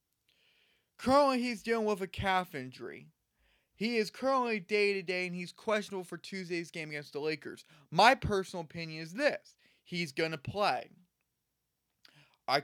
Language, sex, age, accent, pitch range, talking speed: English, male, 20-39, American, 150-195 Hz, 140 wpm